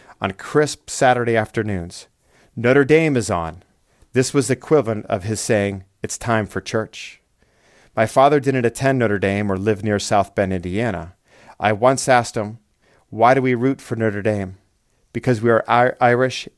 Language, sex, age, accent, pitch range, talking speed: English, male, 40-59, American, 100-125 Hz, 165 wpm